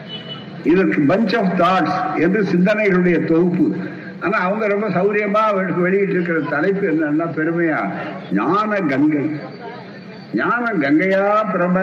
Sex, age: male, 60-79